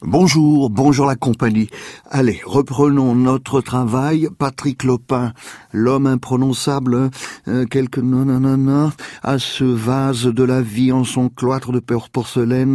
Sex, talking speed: male, 125 wpm